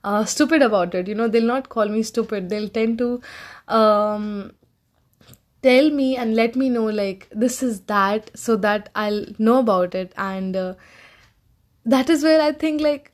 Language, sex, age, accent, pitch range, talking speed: Hindi, female, 10-29, native, 200-250 Hz, 180 wpm